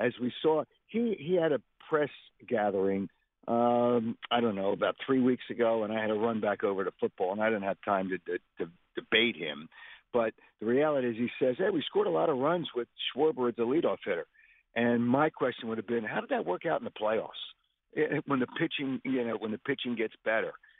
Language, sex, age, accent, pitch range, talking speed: English, male, 50-69, American, 115-155 Hz, 230 wpm